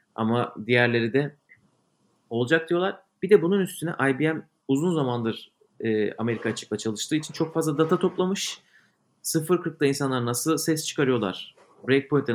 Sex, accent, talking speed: male, native, 130 wpm